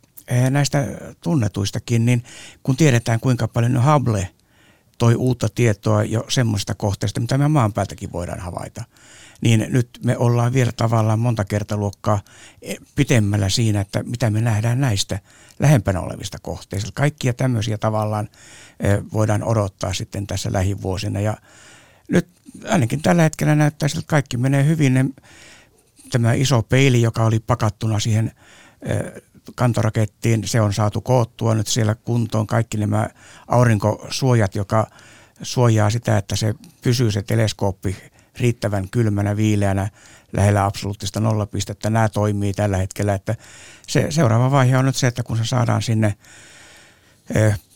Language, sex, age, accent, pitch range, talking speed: Finnish, male, 60-79, native, 105-125 Hz, 135 wpm